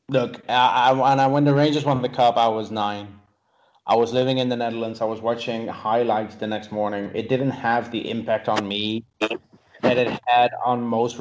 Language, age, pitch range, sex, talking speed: English, 30-49, 105-120 Hz, male, 195 wpm